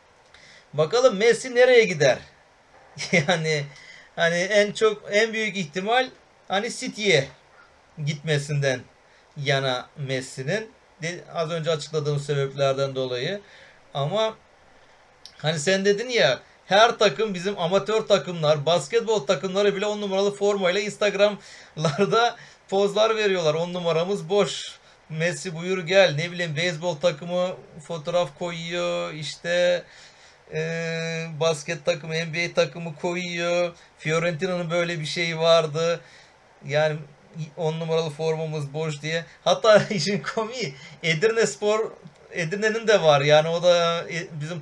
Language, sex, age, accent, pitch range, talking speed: Turkish, male, 40-59, native, 155-200 Hz, 110 wpm